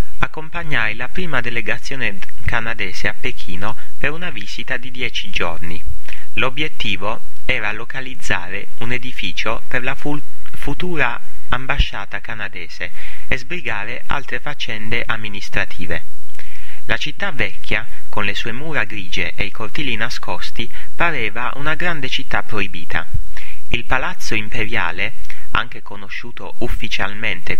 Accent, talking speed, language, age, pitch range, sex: Italian, 110 wpm, English, 30-49, 100-130 Hz, male